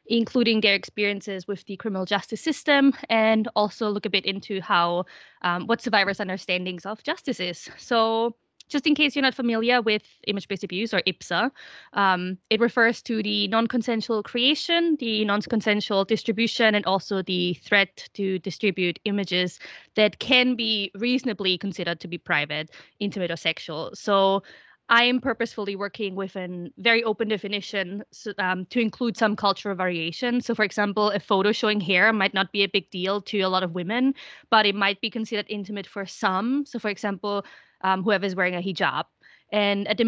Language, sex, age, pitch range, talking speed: English, female, 20-39, 195-240 Hz, 175 wpm